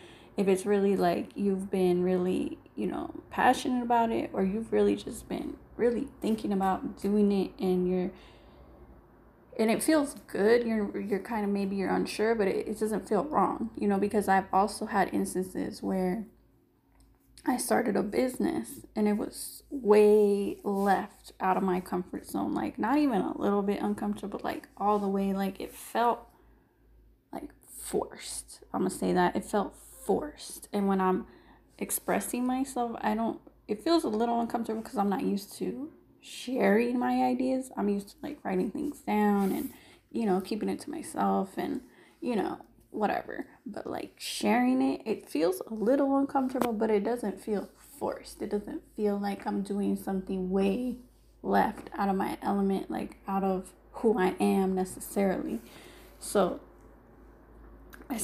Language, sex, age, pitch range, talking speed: English, female, 20-39, 195-245 Hz, 165 wpm